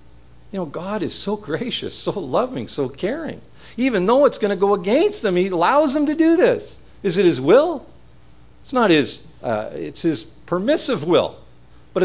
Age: 50-69